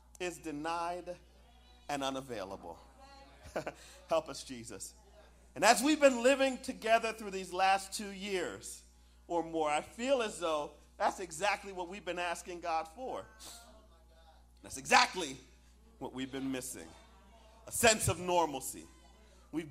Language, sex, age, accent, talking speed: English, male, 40-59, American, 130 wpm